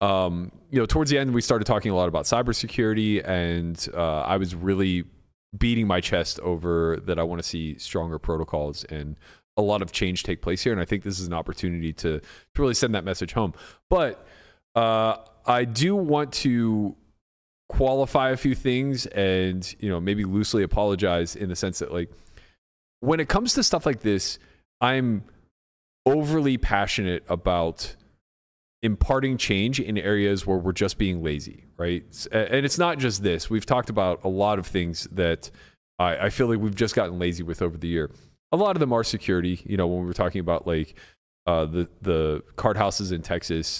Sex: male